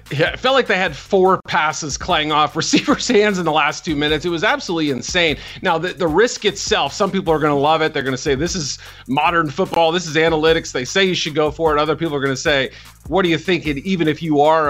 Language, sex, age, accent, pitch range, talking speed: English, male, 40-59, American, 130-165 Hz, 260 wpm